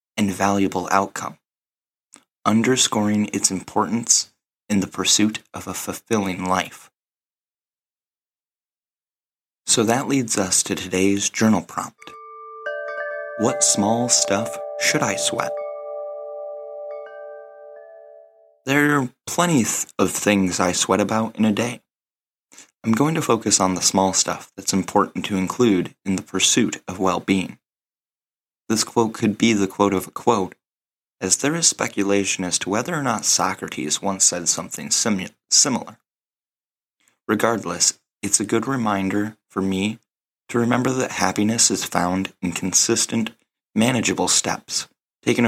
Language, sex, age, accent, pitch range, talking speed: English, male, 30-49, American, 90-115 Hz, 125 wpm